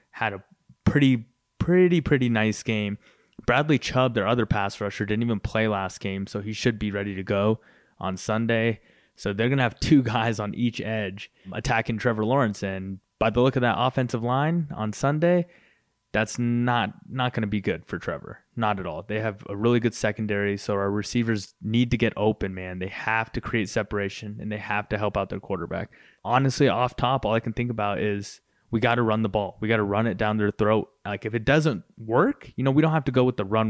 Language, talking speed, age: English, 225 wpm, 20-39